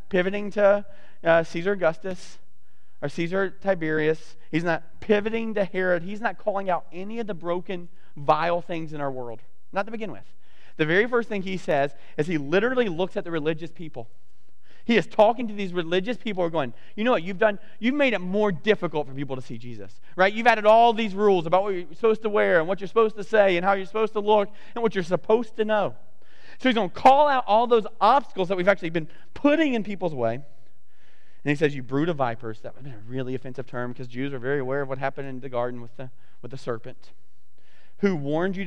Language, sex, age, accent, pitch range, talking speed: English, male, 30-49, American, 130-200 Hz, 230 wpm